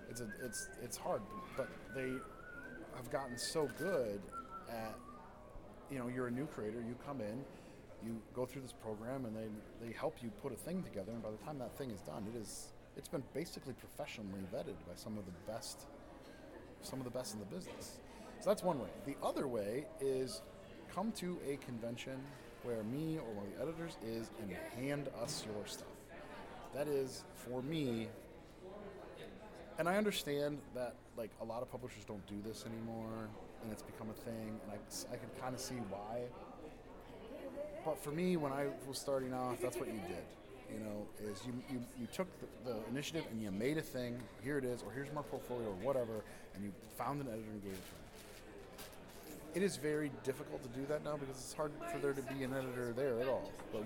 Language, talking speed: English, 205 wpm